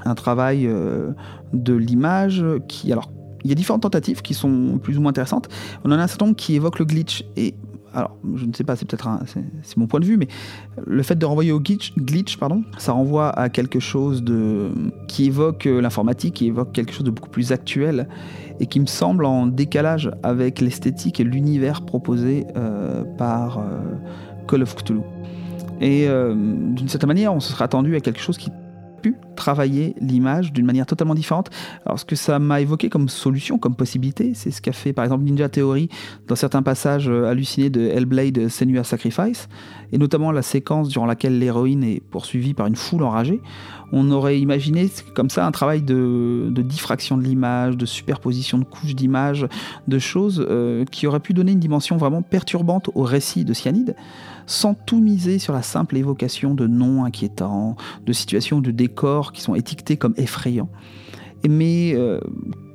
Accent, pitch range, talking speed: French, 120-150 Hz, 190 wpm